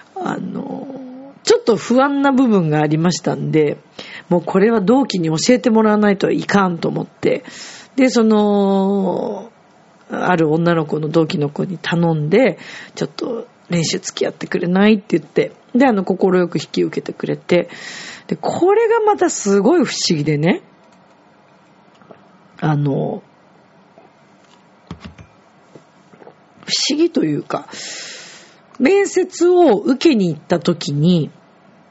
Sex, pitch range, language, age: female, 170-260 Hz, Japanese, 40-59